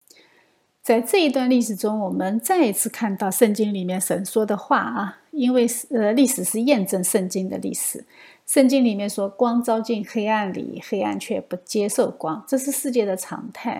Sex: female